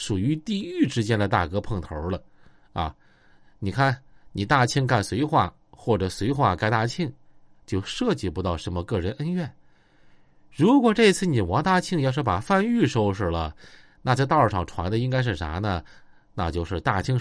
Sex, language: male, Chinese